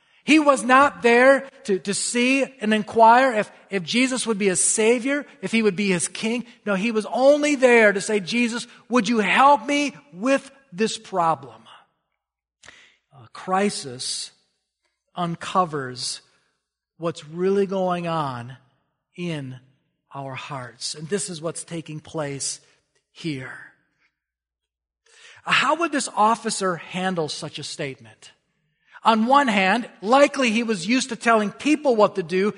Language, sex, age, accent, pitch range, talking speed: English, male, 40-59, American, 155-245 Hz, 140 wpm